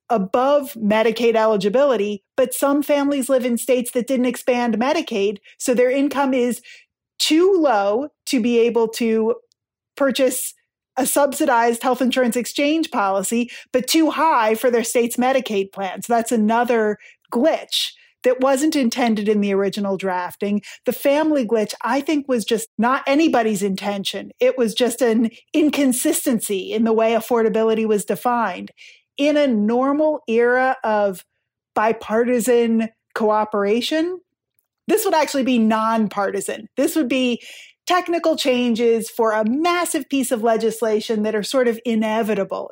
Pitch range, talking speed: 215-265 Hz, 135 wpm